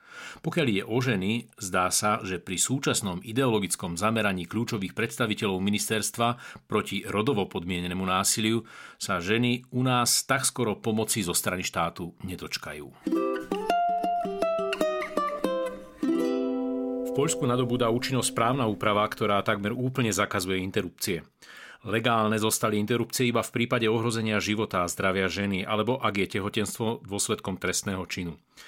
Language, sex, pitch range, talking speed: Slovak, male, 100-125 Hz, 120 wpm